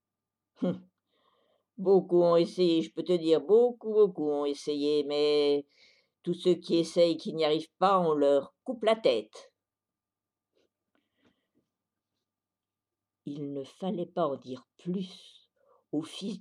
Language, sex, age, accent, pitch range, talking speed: French, female, 60-79, French, 135-185 Hz, 130 wpm